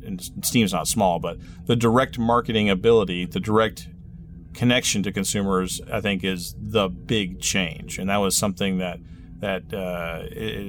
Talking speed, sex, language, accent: 145 wpm, male, English, American